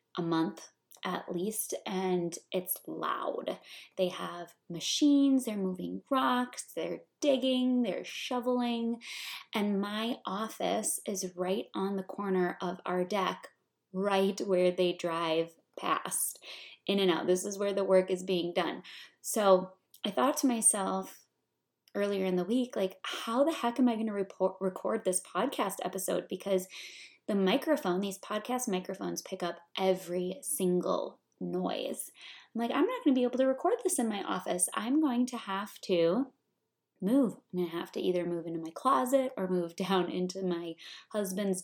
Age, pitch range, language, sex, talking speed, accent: 20-39, 185-250 Hz, English, female, 165 wpm, American